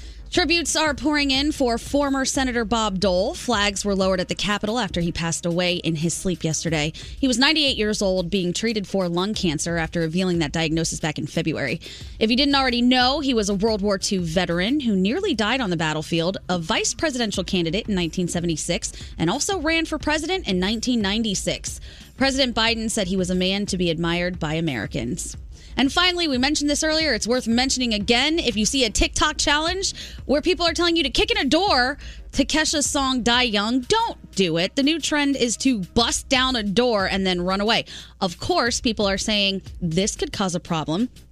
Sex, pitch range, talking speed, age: female, 185-270 Hz, 205 wpm, 20-39